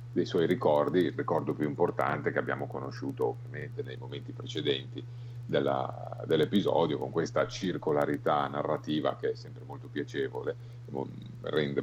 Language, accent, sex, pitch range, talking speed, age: Italian, native, male, 95-120 Hz, 130 wpm, 50-69